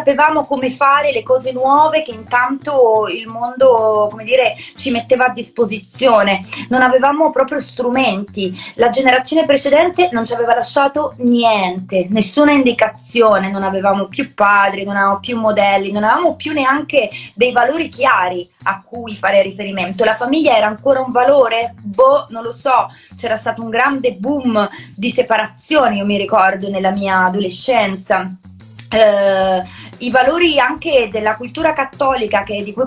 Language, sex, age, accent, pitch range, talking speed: Italian, female, 20-39, native, 210-270 Hz, 145 wpm